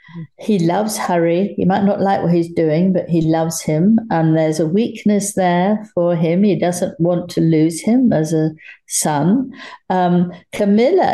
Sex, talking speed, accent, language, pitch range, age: female, 170 wpm, British, English, 165-200 Hz, 50-69